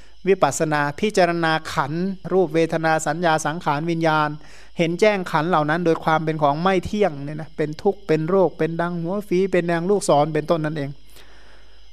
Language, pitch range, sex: Thai, 155-195 Hz, male